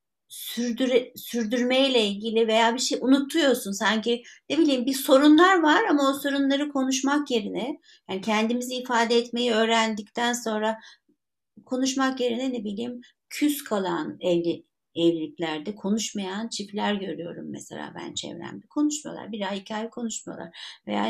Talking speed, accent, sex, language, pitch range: 120 wpm, native, female, Turkish, 205-270 Hz